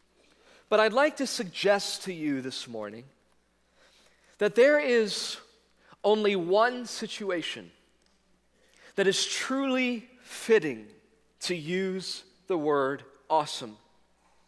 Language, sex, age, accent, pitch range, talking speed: English, male, 40-59, American, 165-215 Hz, 100 wpm